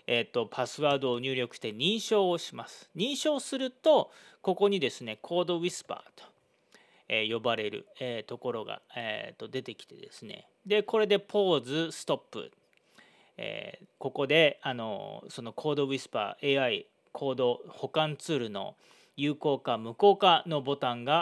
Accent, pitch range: native, 135-205 Hz